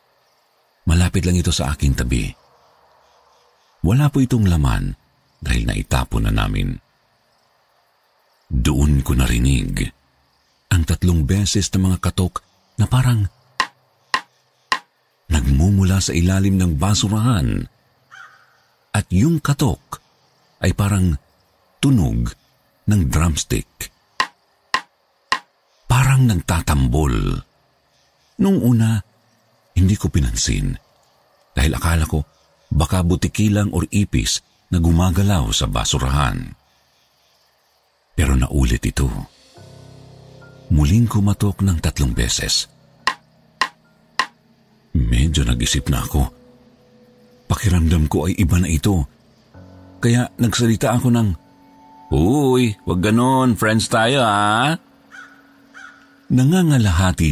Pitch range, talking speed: 80-115 Hz, 90 wpm